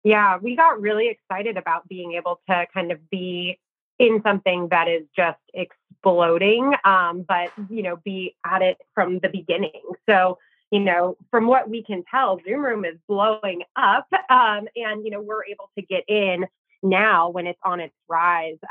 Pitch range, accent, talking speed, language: 165-205 Hz, American, 180 wpm, English